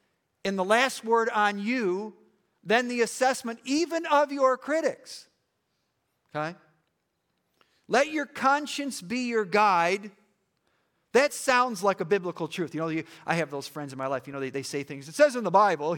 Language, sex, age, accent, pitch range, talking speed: English, male, 50-69, American, 170-255 Hz, 175 wpm